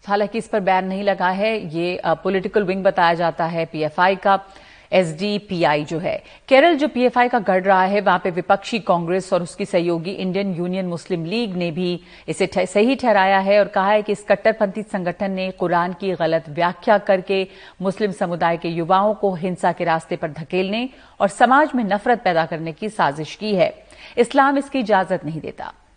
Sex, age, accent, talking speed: female, 50-69, native, 185 wpm